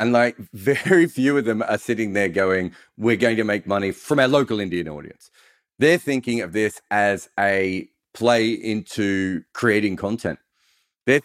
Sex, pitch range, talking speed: male, 105-135 Hz, 165 wpm